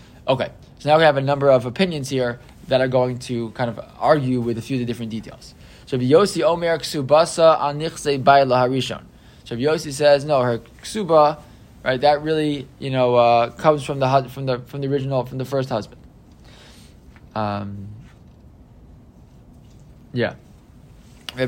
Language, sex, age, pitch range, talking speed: English, male, 20-39, 130-155 Hz, 155 wpm